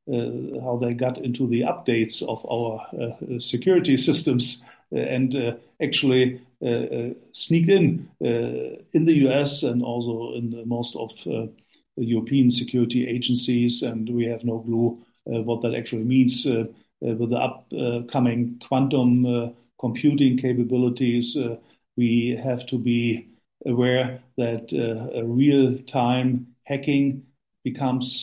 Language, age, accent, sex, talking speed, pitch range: English, 50-69, German, male, 135 wpm, 120-130 Hz